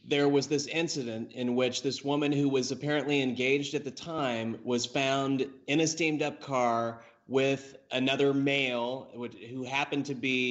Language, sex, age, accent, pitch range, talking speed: English, male, 30-49, American, 120-140 Hz, 160 wpm